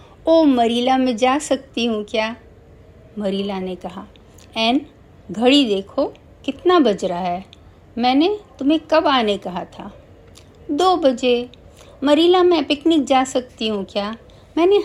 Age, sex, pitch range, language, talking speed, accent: 50-69, female, 210-300 Hz, Hindi, 135 wpm, native